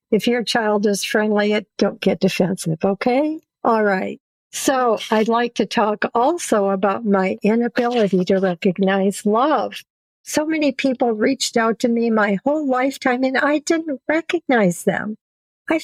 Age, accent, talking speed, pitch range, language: 50-69, American, 150 wpm, 200-250 Hz, English